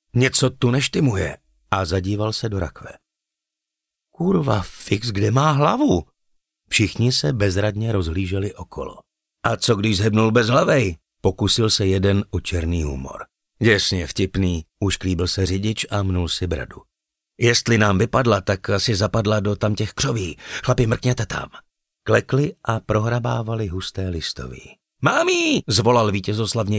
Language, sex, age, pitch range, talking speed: Slovak, male, 50-69, 90-120 Hz, 135 wpm